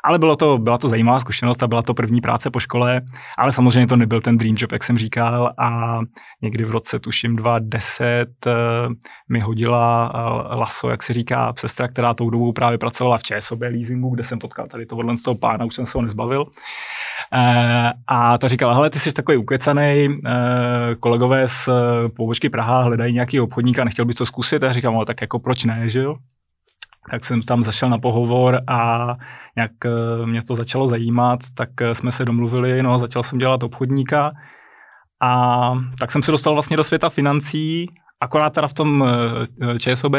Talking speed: 180 wpm